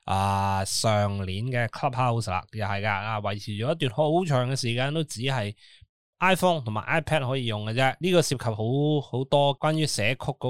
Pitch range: 110-150 Hz